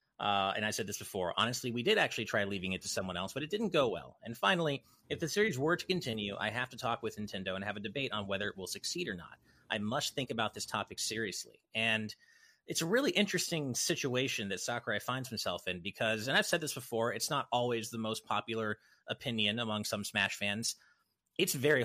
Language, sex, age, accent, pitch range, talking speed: English, male, 30-49, American, 105-135 Hz, 230 wpm